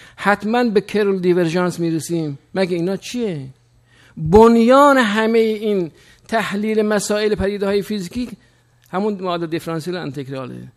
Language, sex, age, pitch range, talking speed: Persian, male, 50-69, 165-215 Hz, 110 wpm